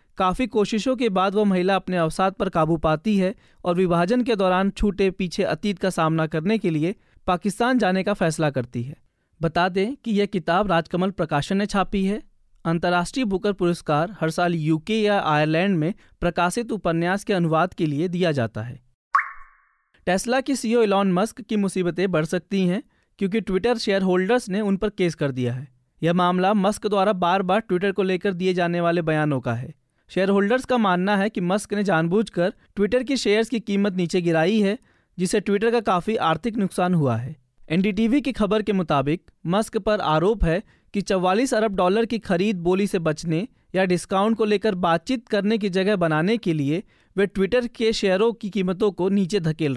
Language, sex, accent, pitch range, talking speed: Hindi, male, native, 170-210 Hz, 190 wpm